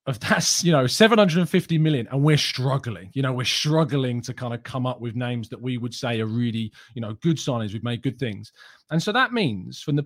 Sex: male